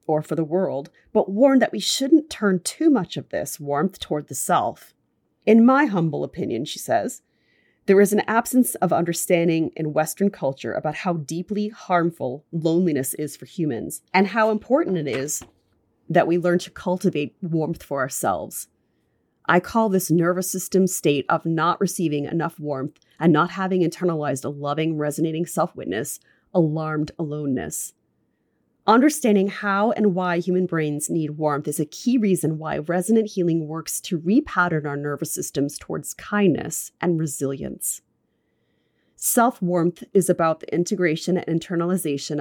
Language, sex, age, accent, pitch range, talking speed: English, female, 30-49, American, 155-190 Hz, 150 wpm